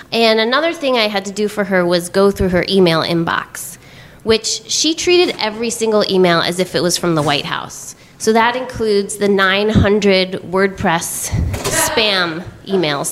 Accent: American